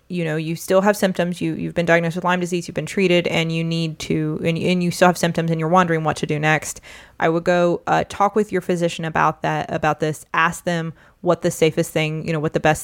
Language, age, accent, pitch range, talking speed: English, 20-39, American, 165-195 Hz, 260 wpm